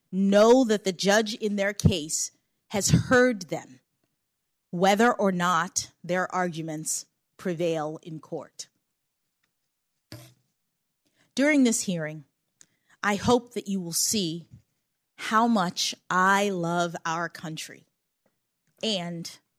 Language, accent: English, American